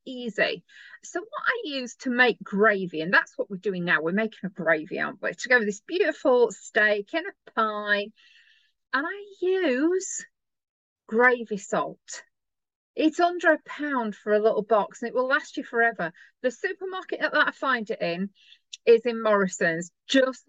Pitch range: 220-325 Hz